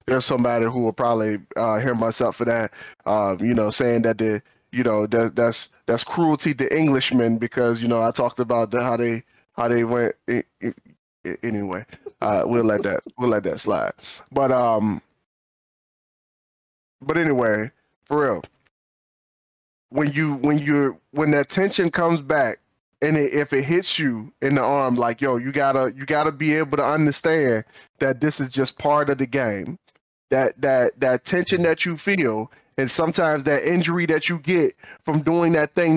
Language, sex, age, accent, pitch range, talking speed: English, male, 10-29, American, 125-170 Hz, 180 wpm